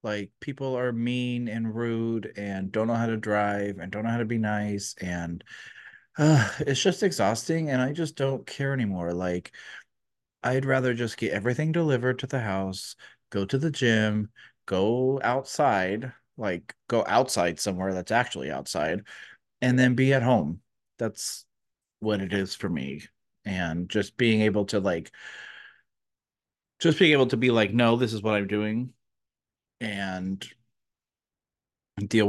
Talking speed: 155 wpm